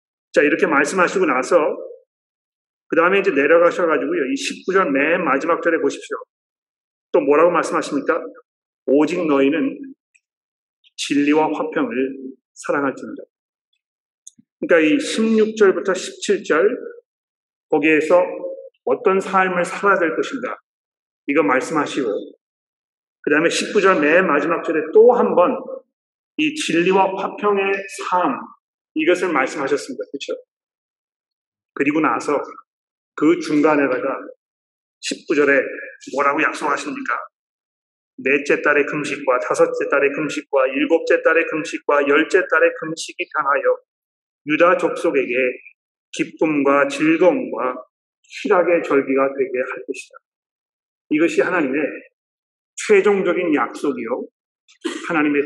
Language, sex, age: Korean, male, 40-59